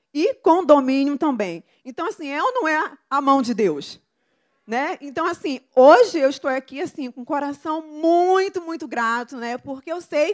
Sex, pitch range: female, 235-320 Hz